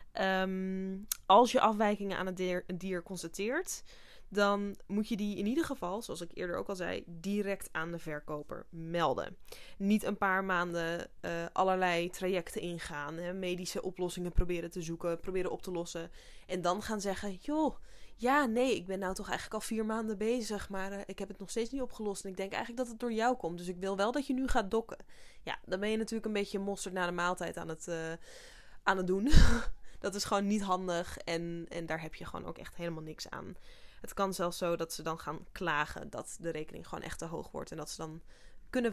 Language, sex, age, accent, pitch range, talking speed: Dutch, female, 20-39, Dutch, 175-220 Hz, 215 wpm